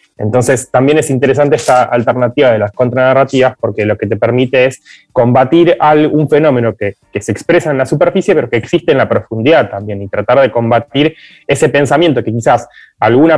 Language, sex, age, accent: Spanish, male, 20-39, Argentinian